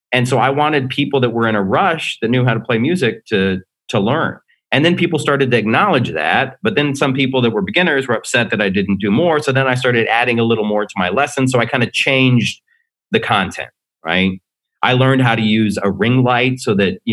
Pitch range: 100-130 Hz